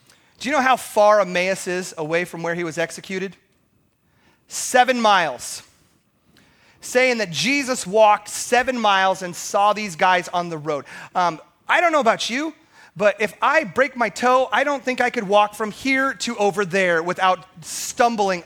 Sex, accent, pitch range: male, American, 170-230 Hz